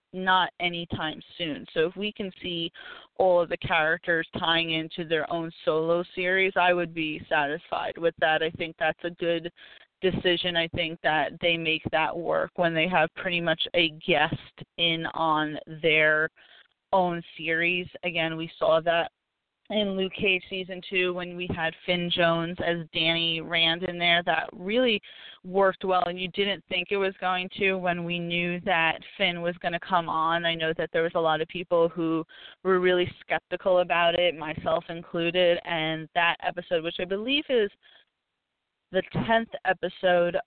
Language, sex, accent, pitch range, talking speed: English, female, American, 165-185 Hz, 175 wpm